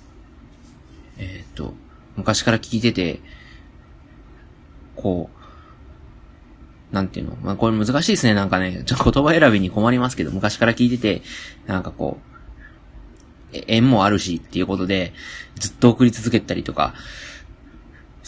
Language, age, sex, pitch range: Japanese, 20-39, male, 95-130 Hz